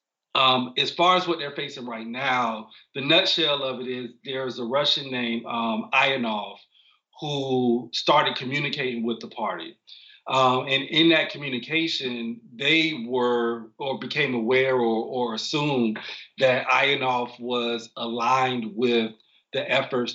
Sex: male